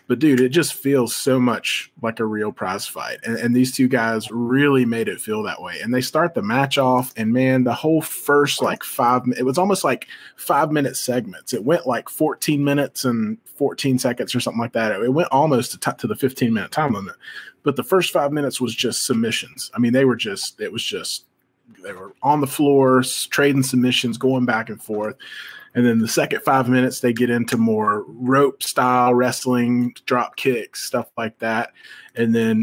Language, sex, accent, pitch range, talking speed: English, male, American, 115-140 Hz, 200 wpm